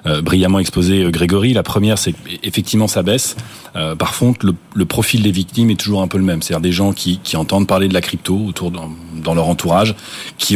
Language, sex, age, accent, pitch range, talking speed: French, male, 30-49, French, 85-105 Hz, 210 wpm